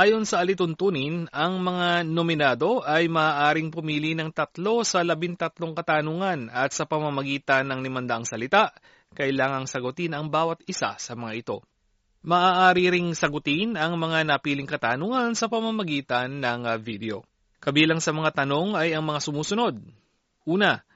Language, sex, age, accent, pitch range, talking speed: Filipino, male, 30-49, native, 140-190 Hz, 135 wpm